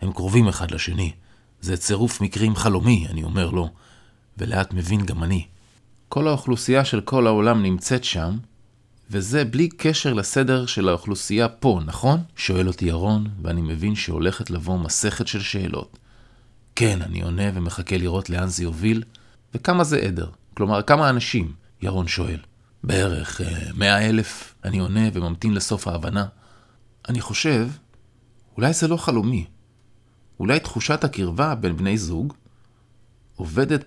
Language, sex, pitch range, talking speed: Hebrew, male, 95-120 Hz, 135 wpm